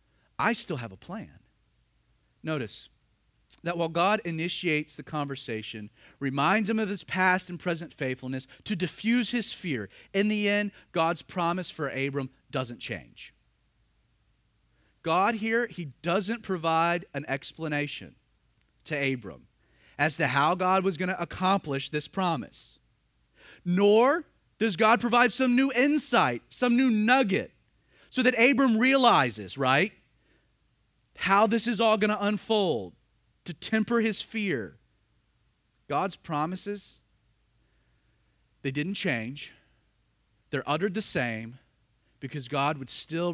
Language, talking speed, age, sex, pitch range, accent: English, 125 wpm, 40-59, male, 120-200 Hz, American